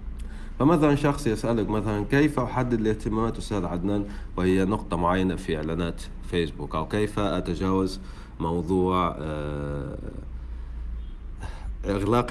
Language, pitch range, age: Arabic, 85-110 Hz, 50-69